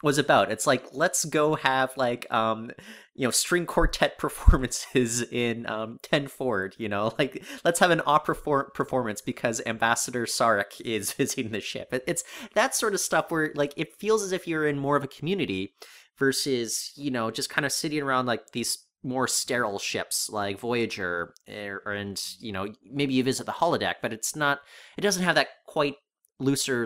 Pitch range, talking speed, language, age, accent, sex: 105-145 Hz, 190 wpm, English, 30-49, American, male